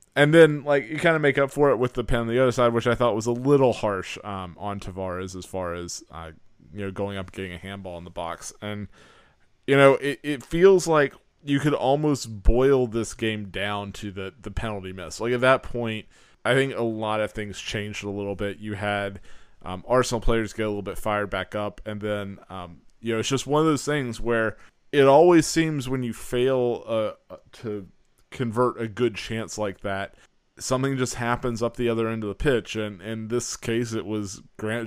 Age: 20-39